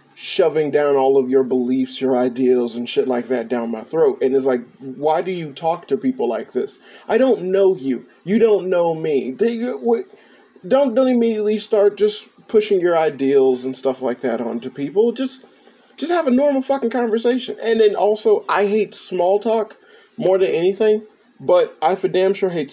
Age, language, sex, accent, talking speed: 30-49, English, male, American, 185 wpm